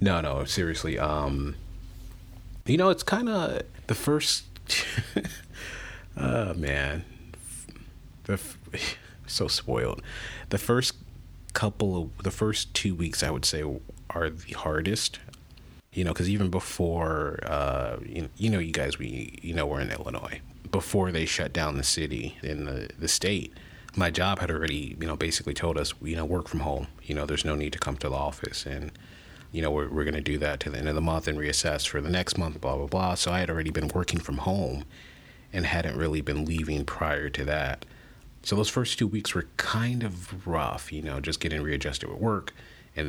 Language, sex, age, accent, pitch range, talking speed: English, male, 30-49, American, 75-95 Hz, 190 wpm